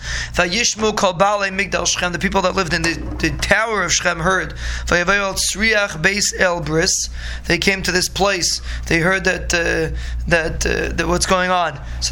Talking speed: 135 wpm